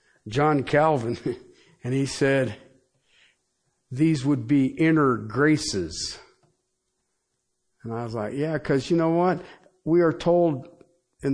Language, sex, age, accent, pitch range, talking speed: English, male, 50-69, American, 140-225 Hz, 120 wpm